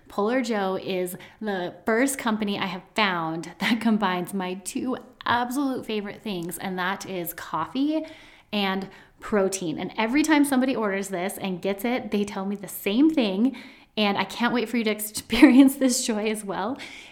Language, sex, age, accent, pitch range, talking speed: English, female, 30-49, American, 185-235 Hz, 170 wpm